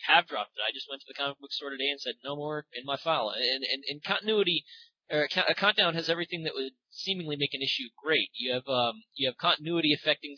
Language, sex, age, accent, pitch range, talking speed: English, male, 30-49, American, 140-185 Hz, 245 wpm